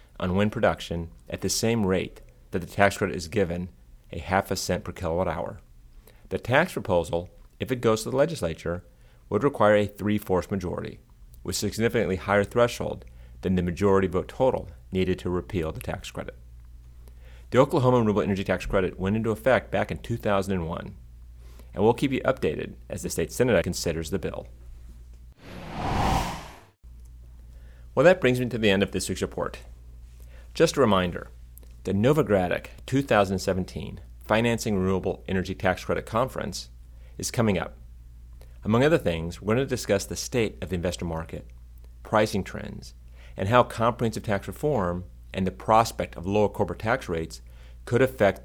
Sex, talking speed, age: male, 160 wpm, 30-49